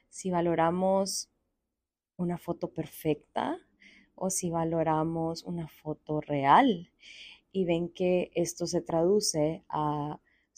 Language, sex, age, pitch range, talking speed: Spanish, female, 20-39, 165-200 Hz, 110 wpm